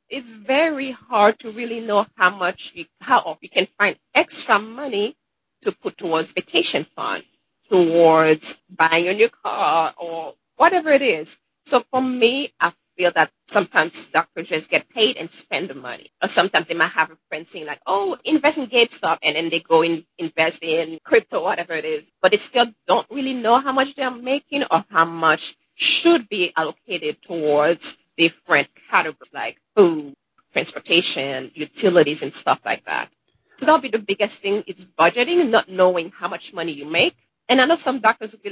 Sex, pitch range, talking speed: female, 165-265 Hz, 185 wpm